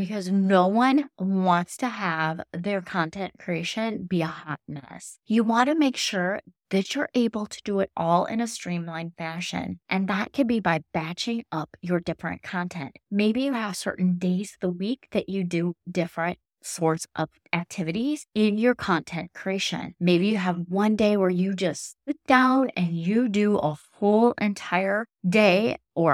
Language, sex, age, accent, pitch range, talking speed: English, female, 30-49, American, 175-215 Hz, 175 wpm